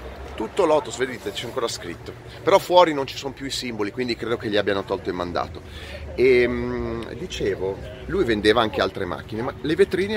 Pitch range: 105-150 Hz